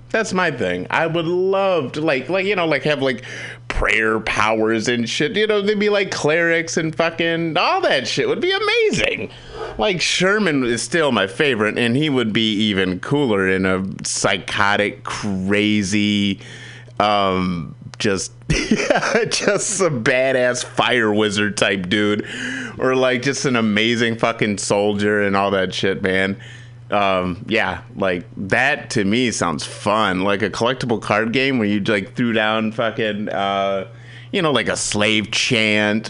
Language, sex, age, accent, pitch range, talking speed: English, male, 30-49, American, 105-165 Hz, 160 wpm